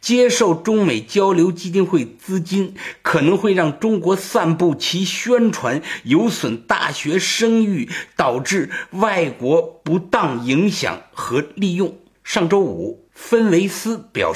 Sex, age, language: male, 50-69, Chinese